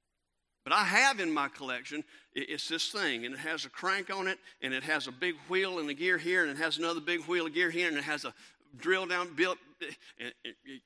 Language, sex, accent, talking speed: English, male, American, 240 wpm